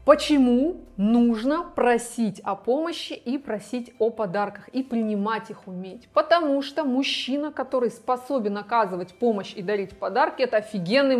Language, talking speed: Russian, 135 wpm